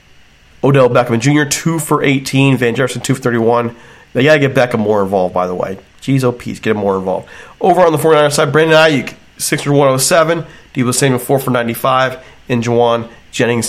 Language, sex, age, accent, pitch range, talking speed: English, male, 40-59, American, 120-150 Hz, 215 wpm